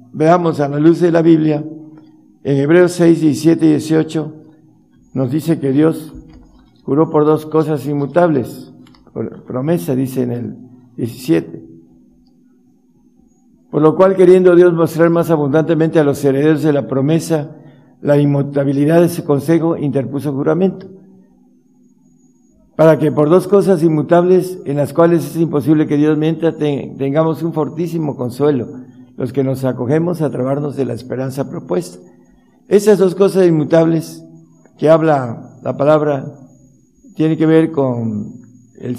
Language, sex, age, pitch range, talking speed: Spanish, male, 60-79, 135-165 Hz, 140 wpm